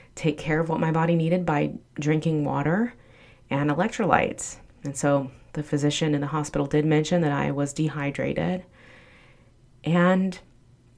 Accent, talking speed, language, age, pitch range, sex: American, 140 wpm, English, 30-49, 145-180 Hz, female